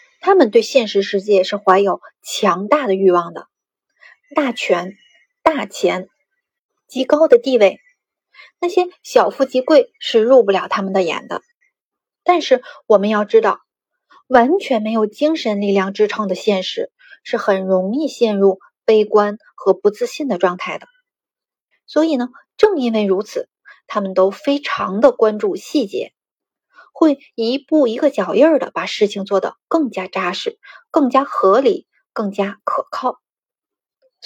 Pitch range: 200-315 Hz